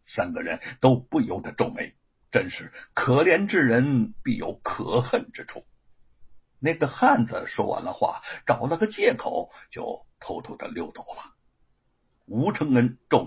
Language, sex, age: Chinese, male, 60-79